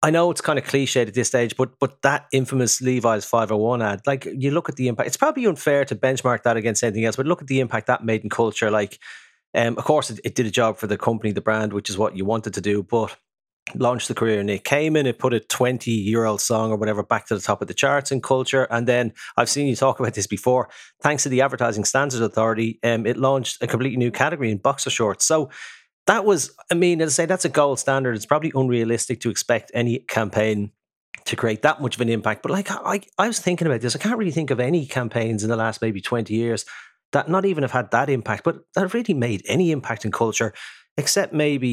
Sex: male